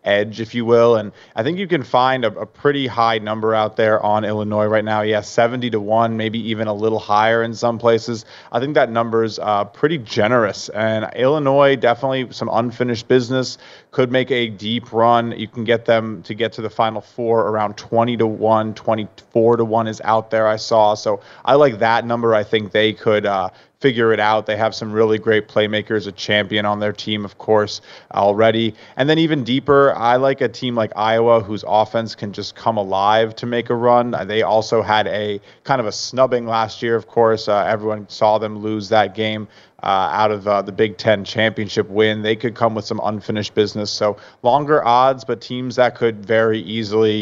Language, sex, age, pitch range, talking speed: English, male, 30-49, 105-115 Hz, 210 wpm